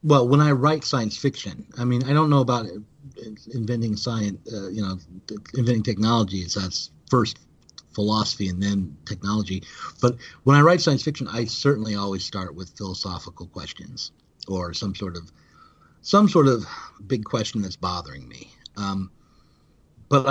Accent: American